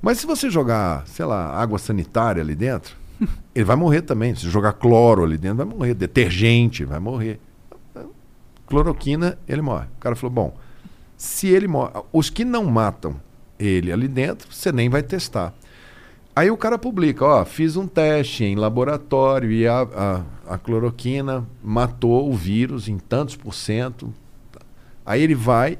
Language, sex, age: Portuguese, male, 50-69